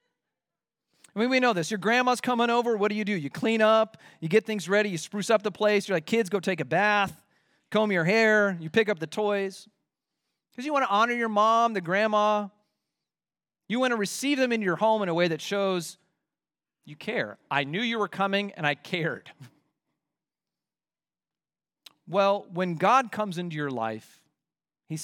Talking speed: 190 wpm